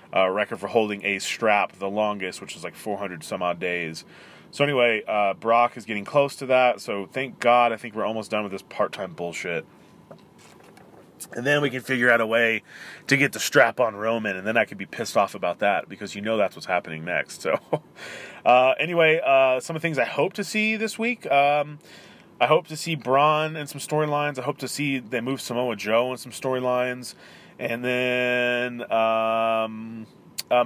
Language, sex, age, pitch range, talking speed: English, male, 30-49, 105-135 Hz, 205 wpm